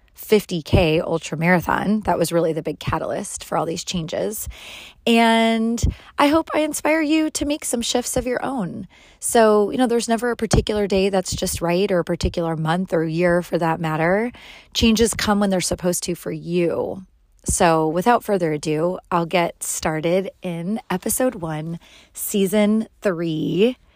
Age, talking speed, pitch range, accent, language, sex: 30-49, 165 wpm, 170-215 Hz, American, English, female